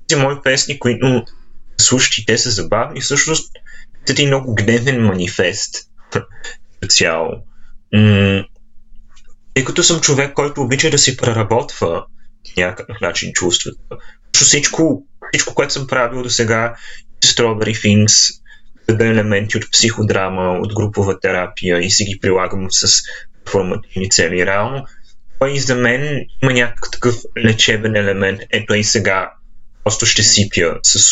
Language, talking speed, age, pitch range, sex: Bulgarian, 130 wpm, 20-39, 100-130 Hz, male